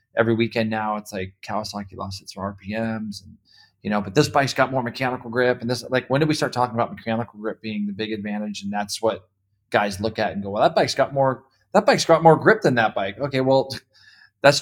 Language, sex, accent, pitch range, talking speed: English, male, American, 105-130 Hz, 240 wpm